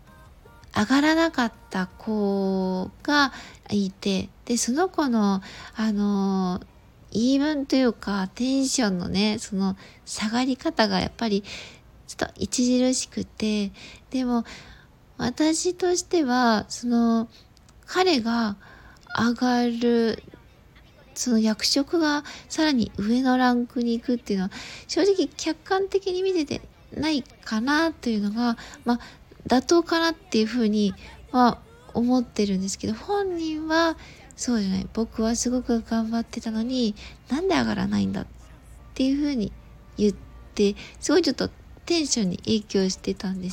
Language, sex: Japanese, female